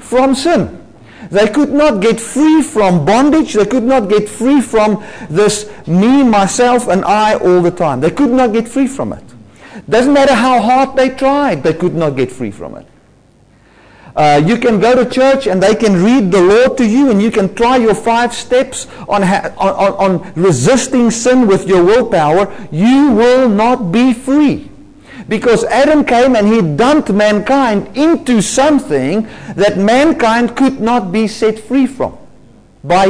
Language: English